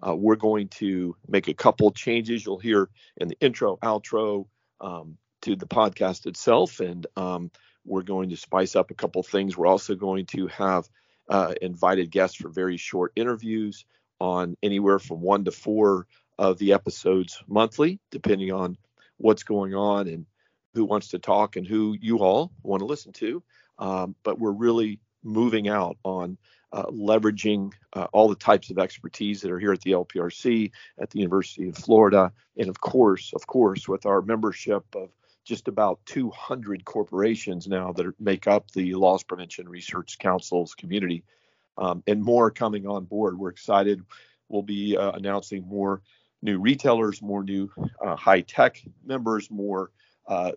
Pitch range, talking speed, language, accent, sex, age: 95-110 Hz, 165 wpm, English, American, male, 40-59